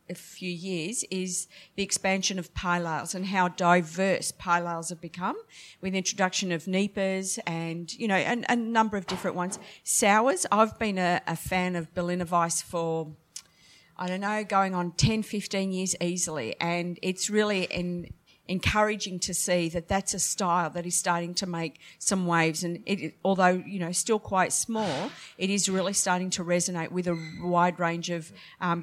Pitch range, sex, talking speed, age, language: 175-195 Hz, female, 180 wpm, 50-69, English